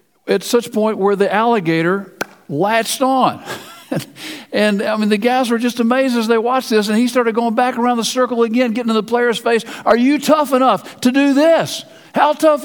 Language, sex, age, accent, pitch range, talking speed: English, male, 50-69, American, 190-245 Hz, 205 wpm